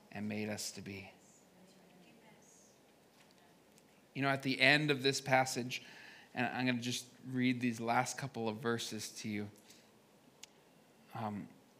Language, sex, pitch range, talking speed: English, male, 125-160 Hz, 135 wpm